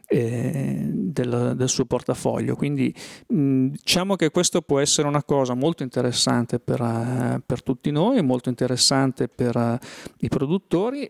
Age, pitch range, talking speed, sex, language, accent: 40-59, 120-140 Hz, 130 wpm, male, Italian, native